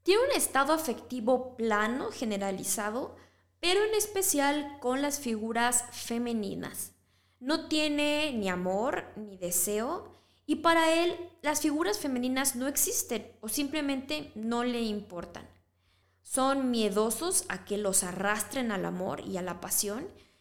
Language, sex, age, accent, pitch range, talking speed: Spanish, female, 20-39, Mexican, 200-285 Hz, 130 wpm